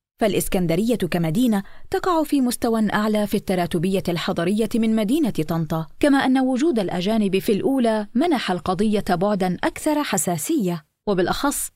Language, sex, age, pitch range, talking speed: Arabic, female, 20-39, 185-250 Hz, 120 wpm